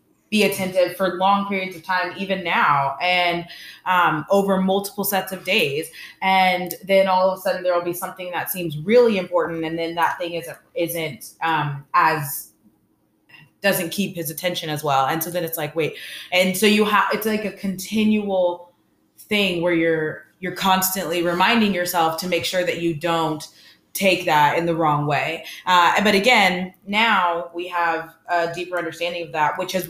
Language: English